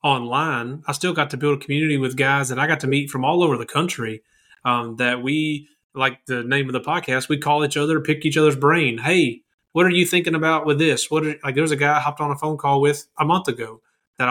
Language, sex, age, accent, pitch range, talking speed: English, male, 30-49, American, 130-150 Hz, 265 wpm